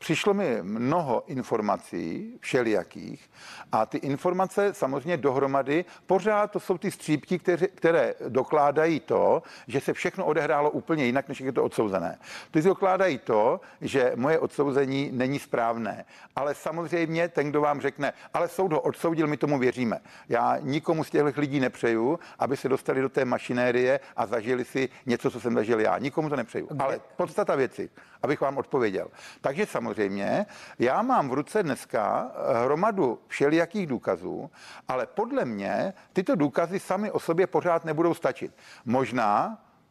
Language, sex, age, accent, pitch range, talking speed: Czech, male, 50-69, native, 135-180 Hz, 150 wpm